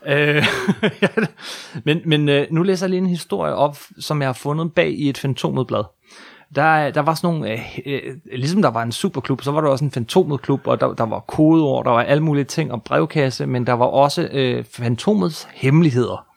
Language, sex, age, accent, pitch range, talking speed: Danish, male, 30-49, native, 125-170 Hz, 185 wpm